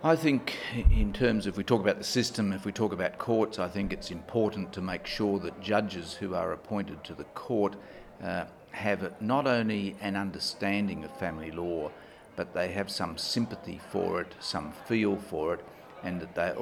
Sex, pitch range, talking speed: male, 90-105 Hz, 190 wpm